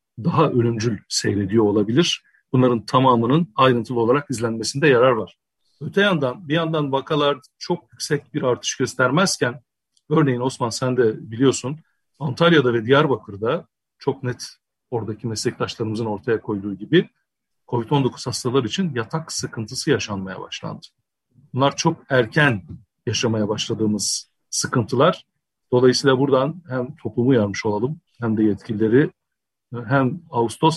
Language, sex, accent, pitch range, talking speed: Turkish, male, native, 115-150 Hz, 115 wpm